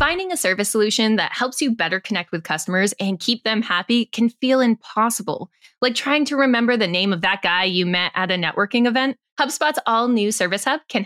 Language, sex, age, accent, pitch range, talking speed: English, female, 10-29, American, 200-260 Hz, 210 wpm